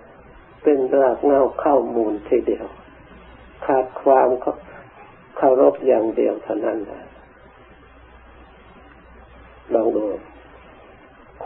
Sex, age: male, 60-79